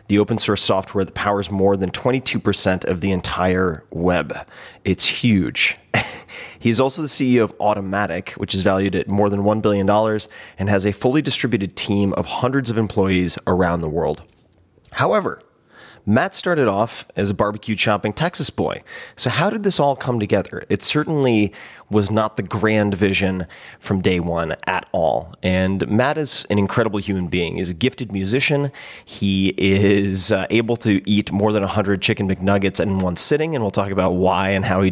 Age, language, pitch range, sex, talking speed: 30-49, English, 95-115 Hz, male, 175 wpm